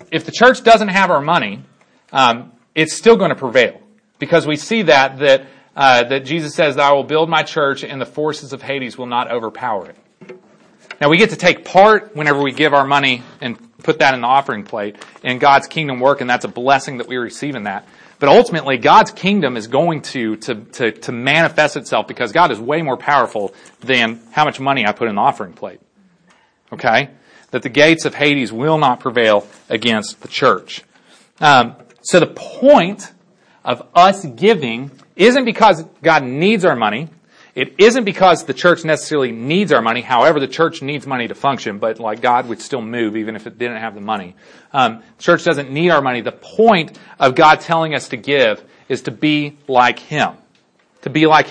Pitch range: 130-185 Hz